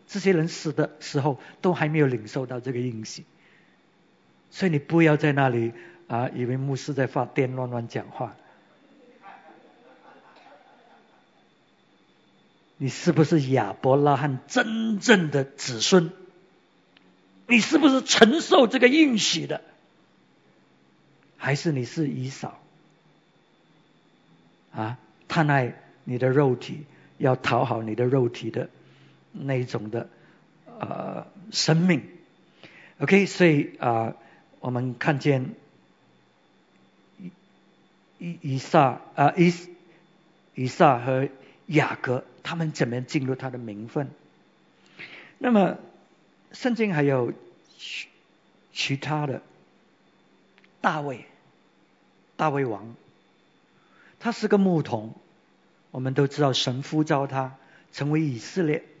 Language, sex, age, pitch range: English, male, 50-69, 125-170 Hz